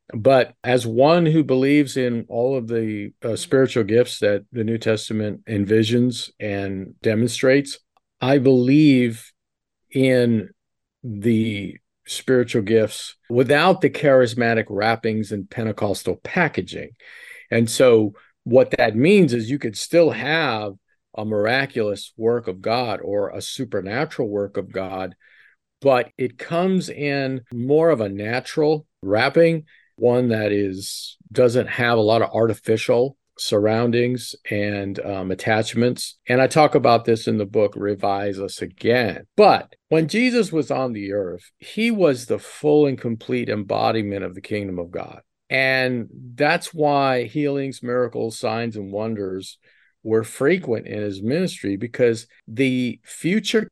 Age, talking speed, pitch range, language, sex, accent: 50-69, 135 wpm, 105-135 Hz, English, male, American